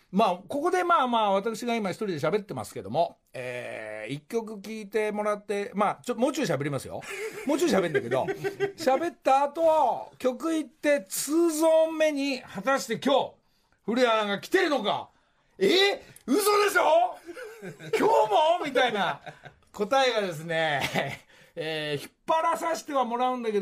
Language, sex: Japanese, male